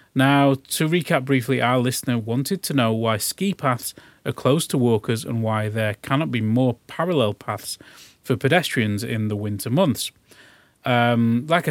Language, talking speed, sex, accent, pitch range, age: Finnish, 165 wpm, male, British, 115-145 Hz, 30-49